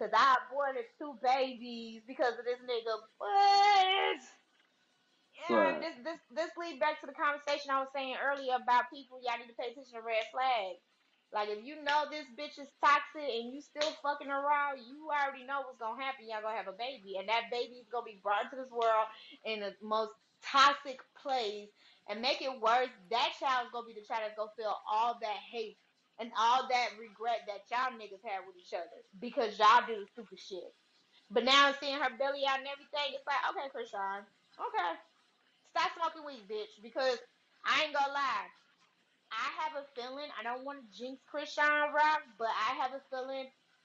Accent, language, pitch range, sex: American, English, 230-295 Hz, female